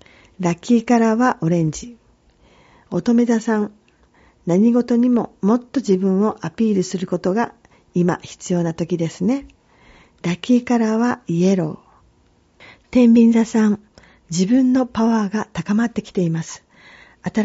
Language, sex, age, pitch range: Japanese, female, 40-59, 180-230 Hz